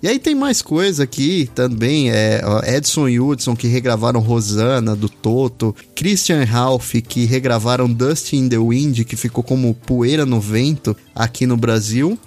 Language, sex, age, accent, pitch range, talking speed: Portuguese, male, 20-39, Brazilian, 120-155 Hz, 160 wpm